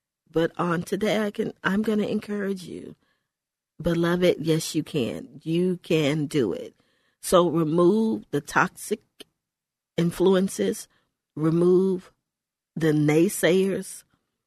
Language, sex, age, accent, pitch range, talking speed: English, female, 40-59, American, 140-175 Hz, 100 wpm